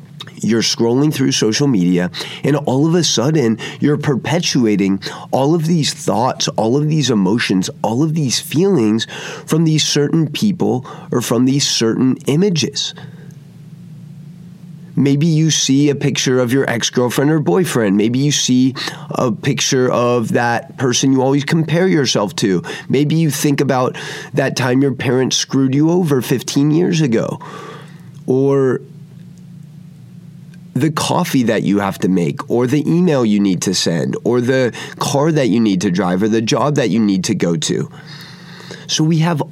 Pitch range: 130-165 Hz